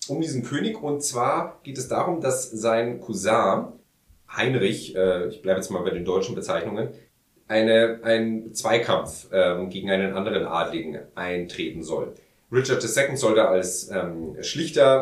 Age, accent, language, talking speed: 40-59, German, German, 150 wpm